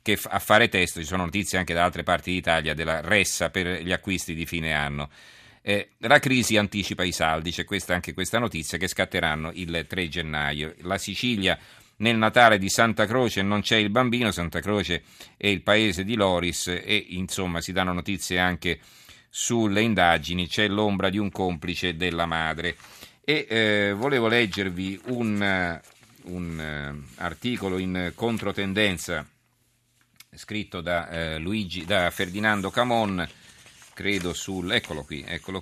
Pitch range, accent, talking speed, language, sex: 90-110 Hz, native, 145 wpm, Italian, male